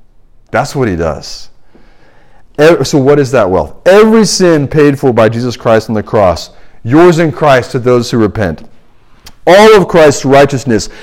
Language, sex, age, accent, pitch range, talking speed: English, male, 40-59, American, 115-165 Hz, 165 wpm